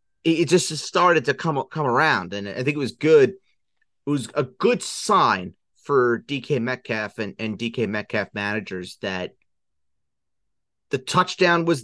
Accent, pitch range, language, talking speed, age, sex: American, 95-130 Hz, English, 150 wpm, 30-49, male